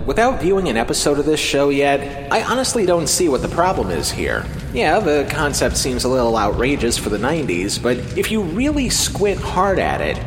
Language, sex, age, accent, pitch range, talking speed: English, male, 30-49, American, 120-185 Hz, 205 wpm